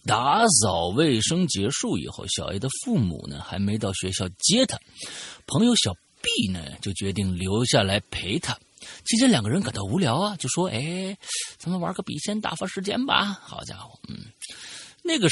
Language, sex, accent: Chinese, male, native